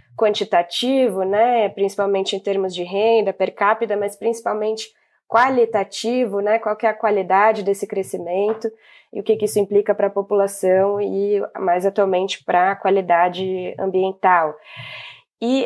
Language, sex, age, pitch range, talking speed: Portuguese, female, 20-39, 195-240 Hz, 140 wpm